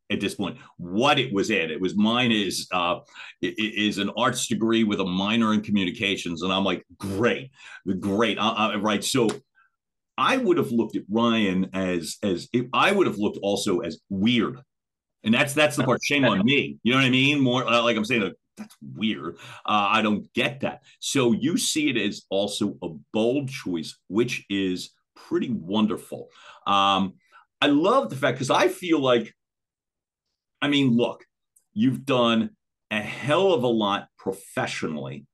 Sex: male